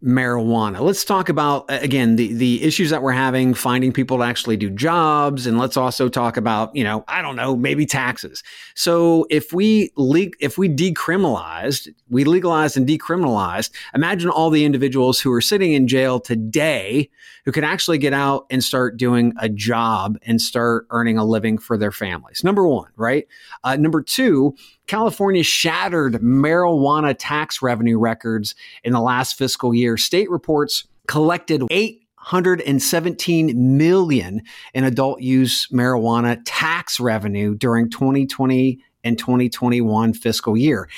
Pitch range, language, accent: 120-155 Hz, English, American